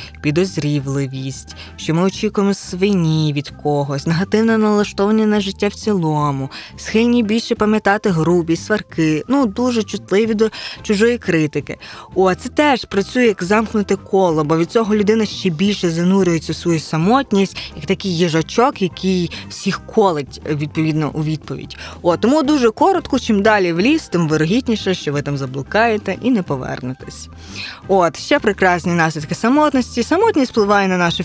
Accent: native